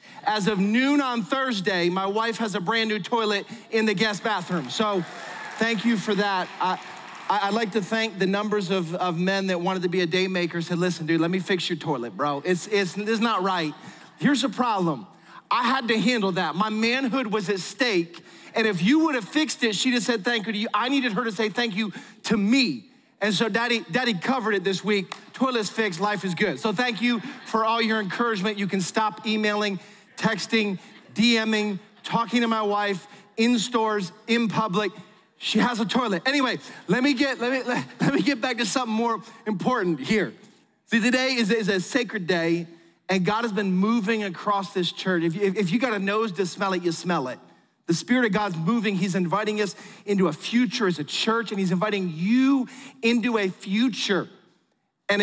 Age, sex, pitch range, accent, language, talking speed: 30-49, male, 190-230 Hz, American, English, 210 wpm